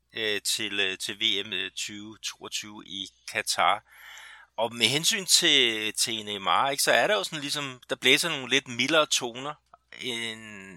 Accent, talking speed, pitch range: native, 140 wpm, 105-130 Hz